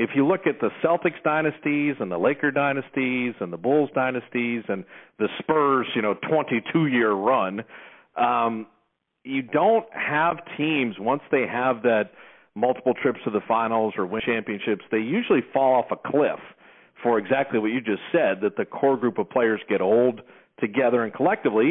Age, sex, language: 50-69, male, English